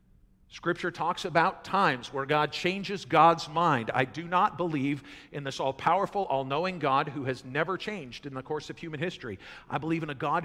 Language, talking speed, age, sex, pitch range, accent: English, 190 wpm, 50-69, male, 135-185 Hz, American